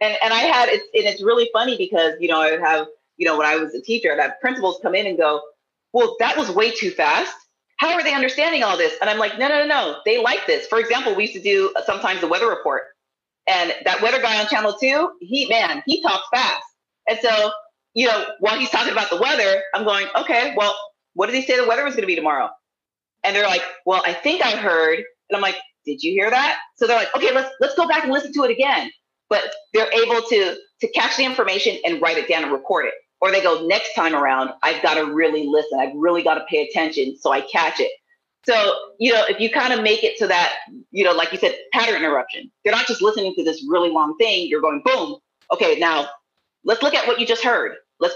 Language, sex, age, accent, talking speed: English, female, 30-49, American, 250 wpm